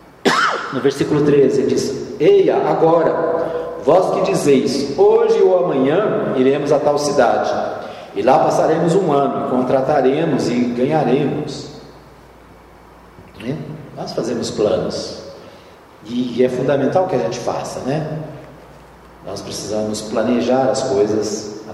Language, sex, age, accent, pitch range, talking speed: Portuguese, male, 50-69, Brazilian, 130-185 Hz, 120 wpm